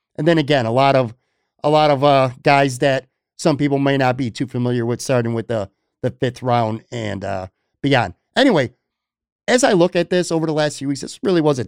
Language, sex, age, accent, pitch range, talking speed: English, male, 50-69, American, 125-170 Hz, 225 wpm